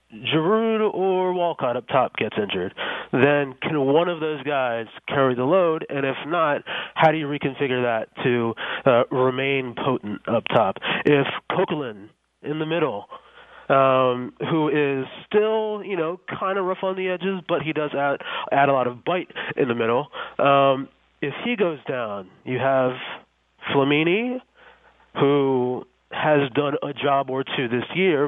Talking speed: 160 wpm